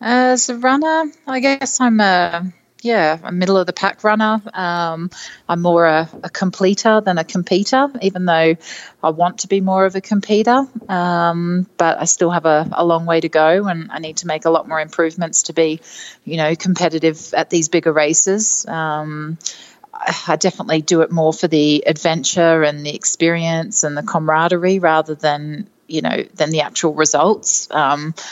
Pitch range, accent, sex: 160-200 Hz, Australian, female